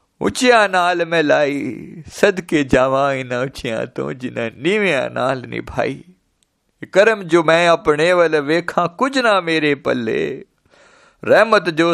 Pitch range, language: 125-170 Hz, Hindi